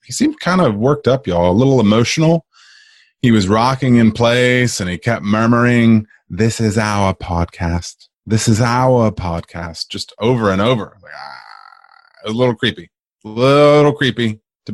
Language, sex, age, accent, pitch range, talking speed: English, male, 30-49, American, 95-130 Hz, 155 wpm